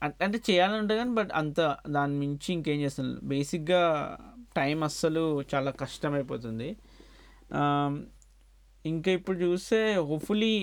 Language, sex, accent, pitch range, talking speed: Telugu, male, native, 140-170 Hz, 115 wpm